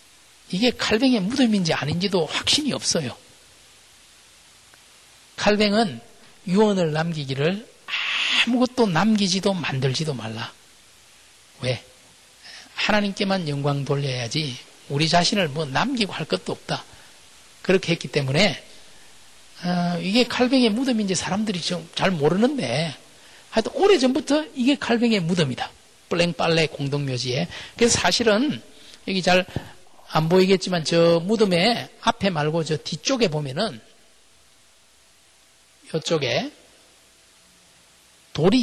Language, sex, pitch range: Korean, male, 150-225 Hz